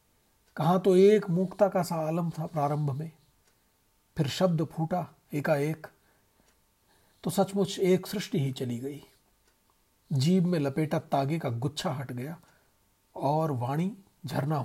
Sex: male